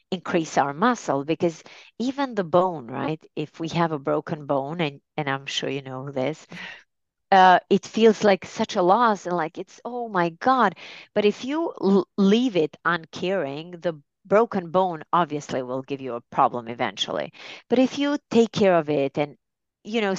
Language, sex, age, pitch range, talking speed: English, female, 30-49, 140-185 Hz, 180 wpm